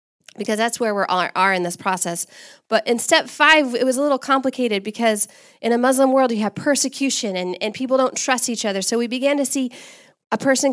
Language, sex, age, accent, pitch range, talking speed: English, female, 20-39, American, 200-255 Hz, 220 wpm